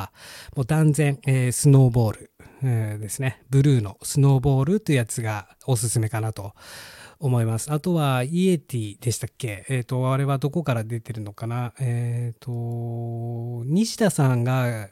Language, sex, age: Japanese, male, 20-39